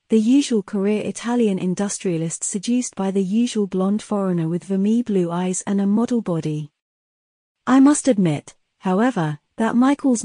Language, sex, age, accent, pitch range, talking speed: Italian, female, 40-59, British, 180-225 Hz, 145 wpm